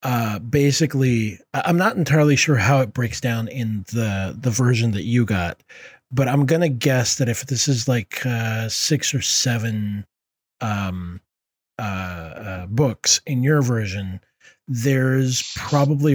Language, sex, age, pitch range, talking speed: English, male, 40-59, 110-140 Hz, 150 wpm